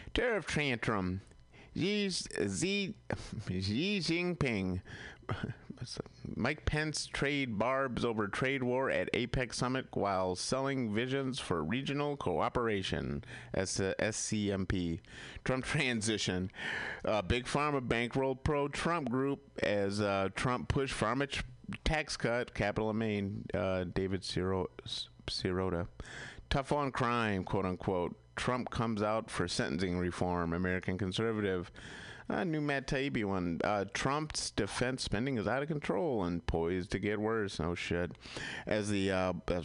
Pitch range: 95-130 Hz